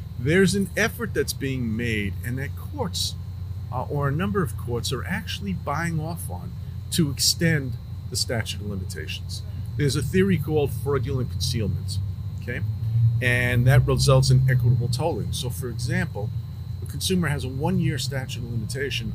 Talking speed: 155 wpm